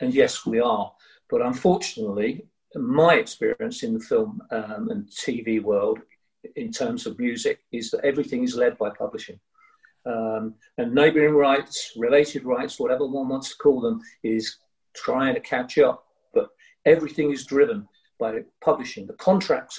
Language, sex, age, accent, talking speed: English, male, 50-69, British, 155 wpm